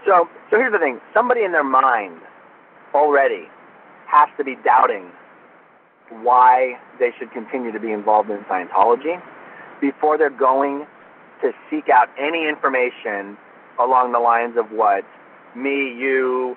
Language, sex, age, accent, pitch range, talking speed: English, male, 30-49, American, 130-195 Hz, 140 wpm